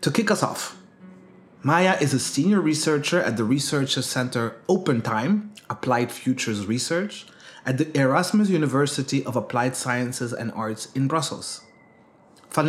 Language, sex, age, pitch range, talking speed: Dutch, male, 30-49, 130-175 Hz, 140 wpm